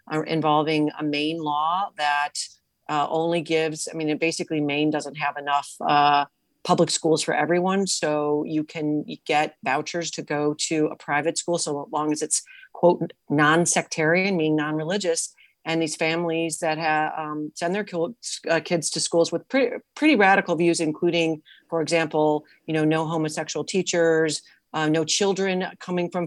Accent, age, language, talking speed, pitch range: American, 40-59, English, 160 wpm, 155-175 Hz